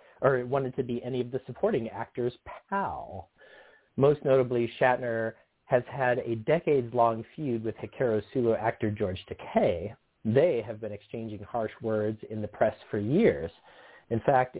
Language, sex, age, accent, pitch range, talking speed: English, male, 40-59, American, 110-140 Hz, 150 wpm